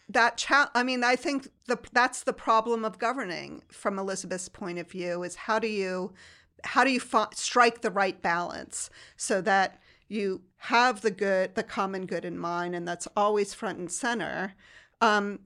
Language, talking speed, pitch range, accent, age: English, 185 wpm, 190-225 Hz, American, 40-59